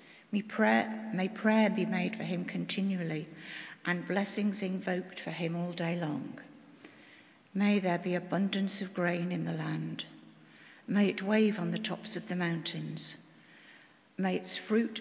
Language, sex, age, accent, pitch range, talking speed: English, female, 50-69, British, 170-205 Hz, 150 wpm